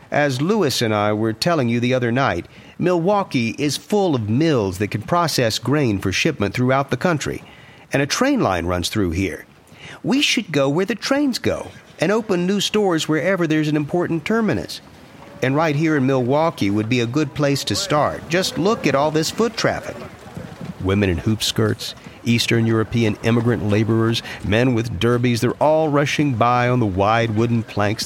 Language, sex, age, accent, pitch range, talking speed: English, male, 50-69, American, 100-150 Hz, 185 wpm